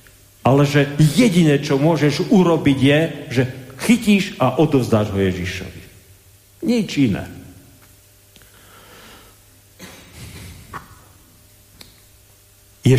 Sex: male